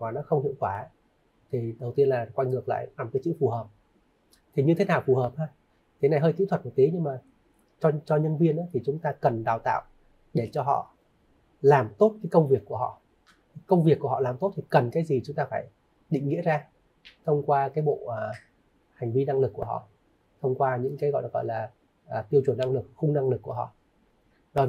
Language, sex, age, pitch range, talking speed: Vietnamese, male, 30-49, 130-165 Hz, 245 wpm